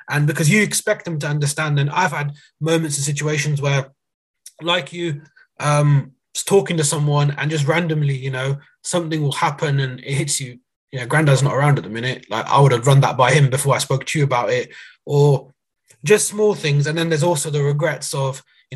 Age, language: 20-39, English